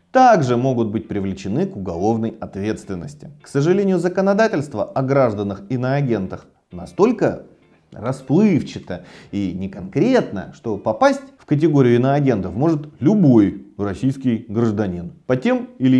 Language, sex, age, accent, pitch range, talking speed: Russian, male, 30-49, native, 110-150 Hz, 110 wpm